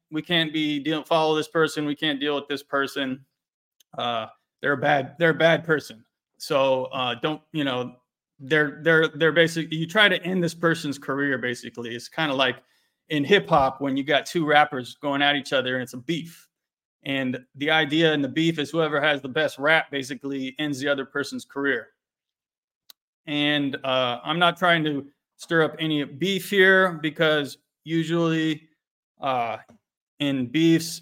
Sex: male